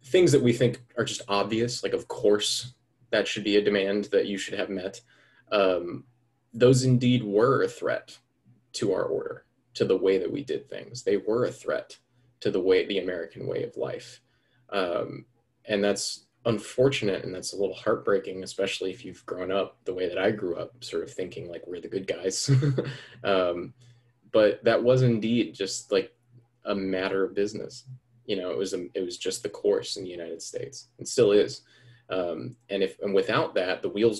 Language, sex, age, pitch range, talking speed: English, male, 20-39, 100-155 Hz, 195 wpm